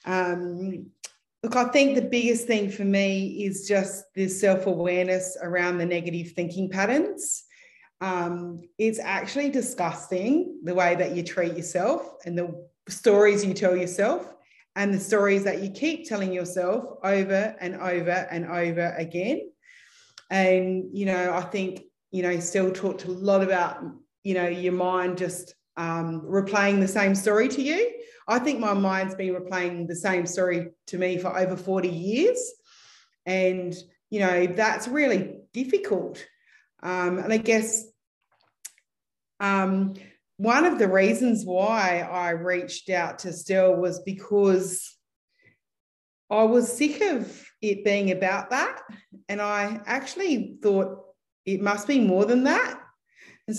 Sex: female